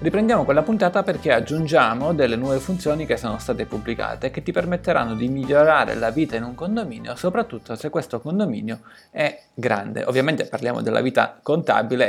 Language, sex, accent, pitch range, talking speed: Italian, male, native, 120-175 Hz, 165 wpm